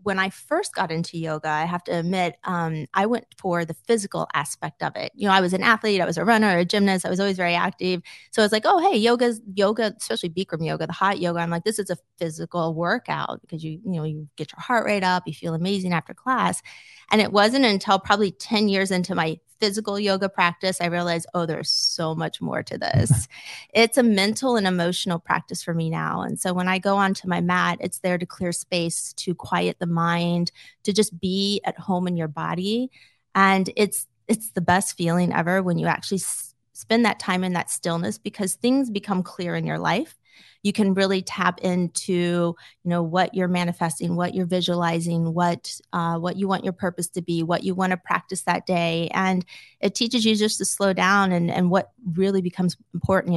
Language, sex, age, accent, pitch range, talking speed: English, female, 20-39, American, 170-195 Hz, 215 wpm